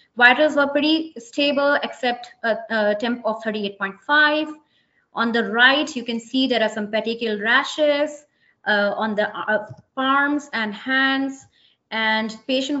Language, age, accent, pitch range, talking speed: English, 20-39, Indian, 215-275 Hz, 140 wpm